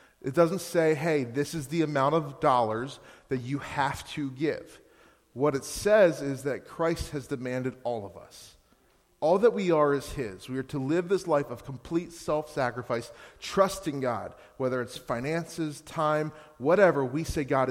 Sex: male